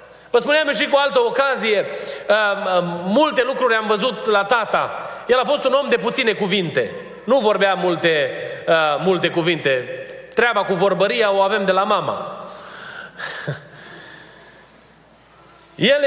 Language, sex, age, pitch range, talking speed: Romanian, male, 30-49, 165-240 Hz, 125 wpm